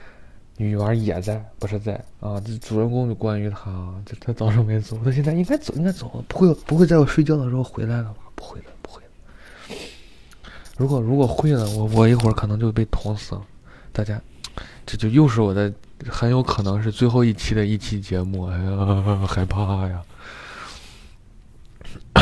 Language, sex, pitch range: Chinese, male, 100-125 Hz